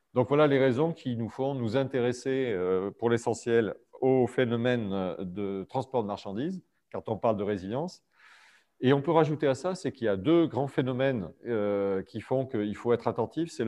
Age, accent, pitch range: 40-59, French, 105-135 Hz